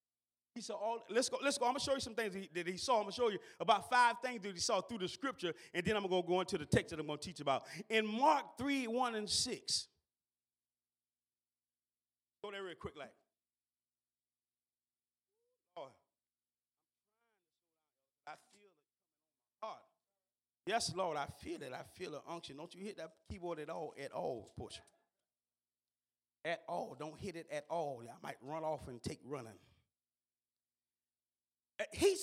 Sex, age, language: male, 30-49, English